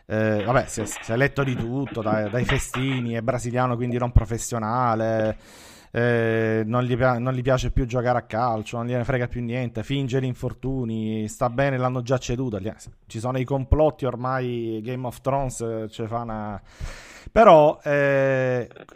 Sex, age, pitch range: male, 30-49, 110-130 Hz